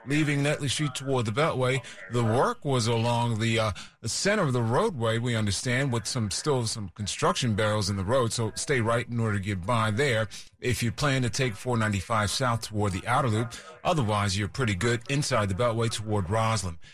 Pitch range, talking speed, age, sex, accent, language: 110-135 Hz, 200 wpm, 30-49, male, American, English